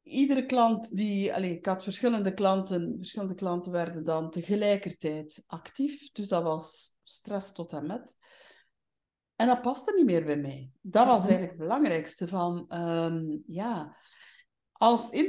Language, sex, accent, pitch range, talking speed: English, female, Dutch, 165-225 Hz, 135 wpm